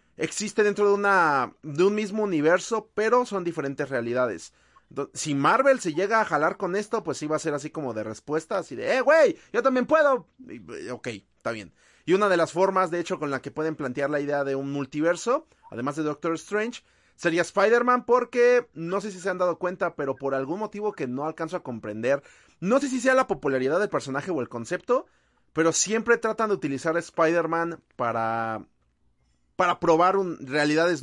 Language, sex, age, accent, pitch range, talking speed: Spanish, male, 30-49, Mexican, 140-200 Hz, 195 wpm